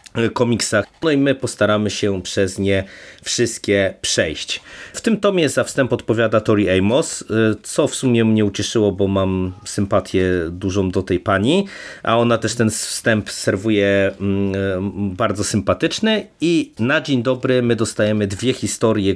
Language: Polish